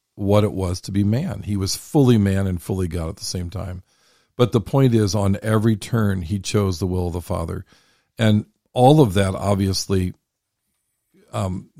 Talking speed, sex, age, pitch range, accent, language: 190 wpm, male, 50-69, 95-115 Hz, American, English